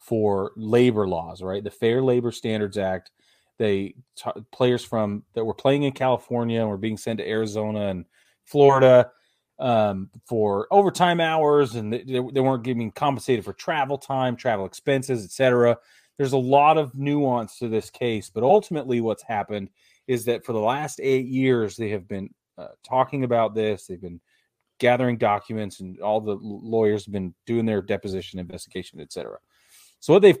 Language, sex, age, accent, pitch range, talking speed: English, male, 30-49, American, 105-130 Hz, 175 wpm